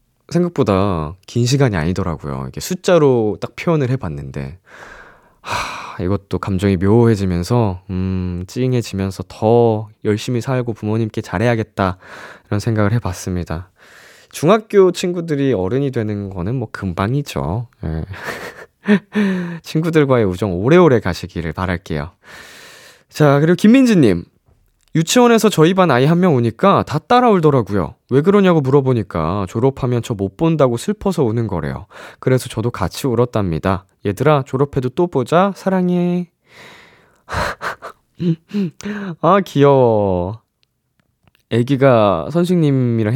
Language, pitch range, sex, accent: Korean, 95-150 Hz, male, native